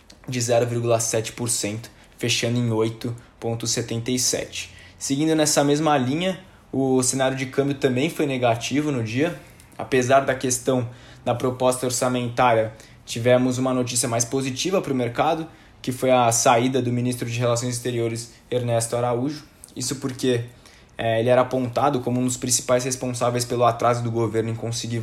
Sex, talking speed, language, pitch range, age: male, 140 wpm, Portuguese, 120-135 Hz, 20-39